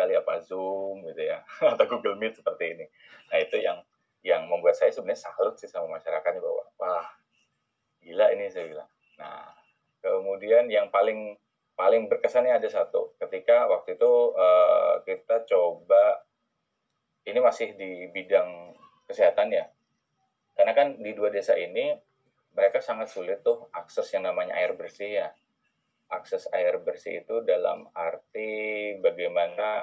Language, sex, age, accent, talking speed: Indonesian, male, 20-39, native, 135 wpm